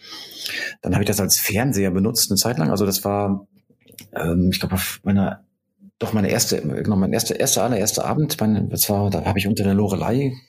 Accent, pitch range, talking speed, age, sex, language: German, 95-110 Hz, 185 wpm, 40-59, male, German